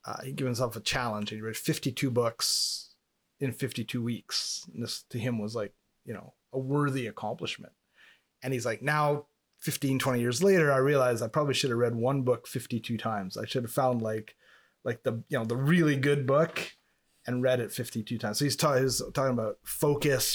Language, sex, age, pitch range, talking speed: English, male, 30-49, 115-145 Hz, 200 wpm